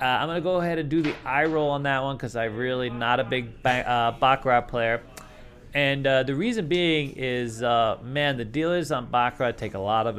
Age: 30-49